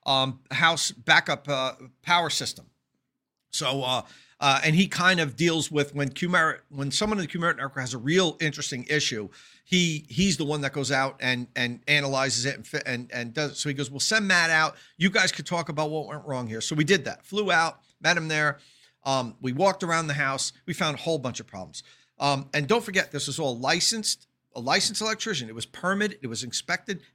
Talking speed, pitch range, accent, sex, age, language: 220 wpm, 135-180 Hz, American, male, 50-69, English